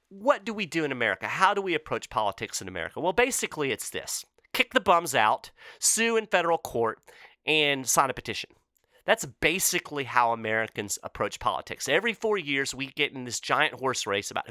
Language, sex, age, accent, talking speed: English, male, 30-49, American, 190 wpm